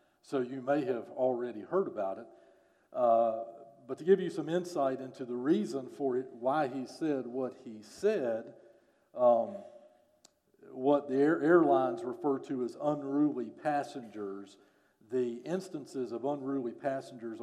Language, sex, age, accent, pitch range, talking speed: English, male, 50-69, American, 125-170 Hz, 140 wpm